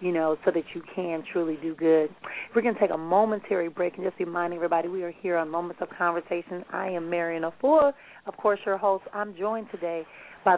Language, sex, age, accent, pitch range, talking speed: English, female, 40-59, American, 165-185 Hz, 220 wpm